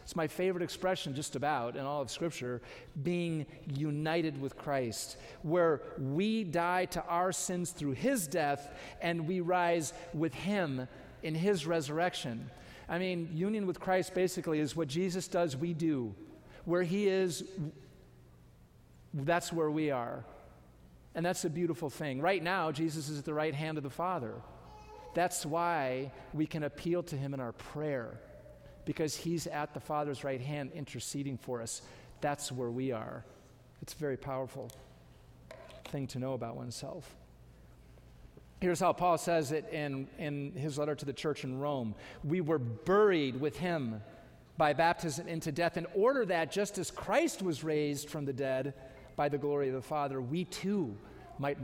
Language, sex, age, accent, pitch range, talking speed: English, male, 40-59, American, 135-170 Hz, 165 wpm